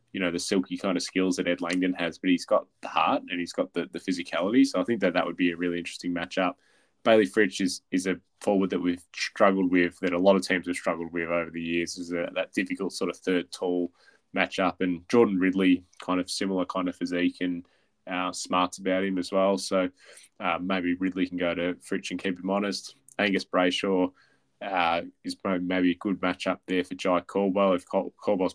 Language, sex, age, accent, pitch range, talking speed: English, male, 20-39, Australian, 90-95 Hz, 220 wpm